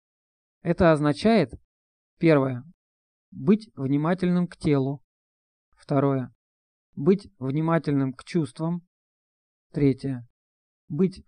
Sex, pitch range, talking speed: male, 135-170 Hz, 75 wpm